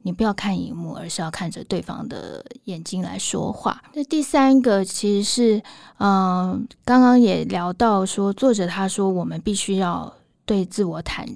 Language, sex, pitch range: Chinese, female, 185-220 Hz